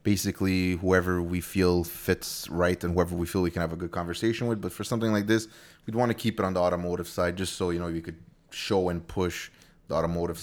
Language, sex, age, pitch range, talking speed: English, male, 20-39, 90-110 Hz, 240 wpm